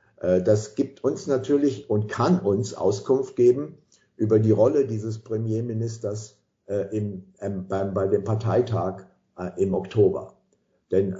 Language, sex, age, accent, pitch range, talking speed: English, male, 50-69, German, 105-130 Hz, 125 wpm